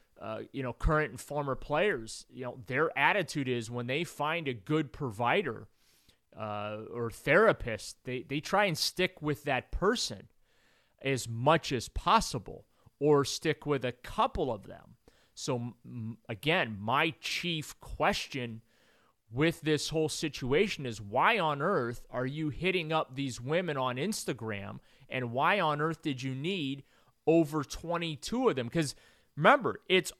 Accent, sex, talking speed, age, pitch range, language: American, male, 150 wpm, 30-49, 120-155 Hz, English